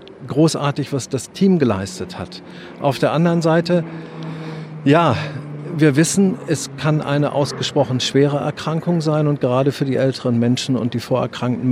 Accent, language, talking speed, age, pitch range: German, German, 150 wpm, 50-69, 130-165 Hz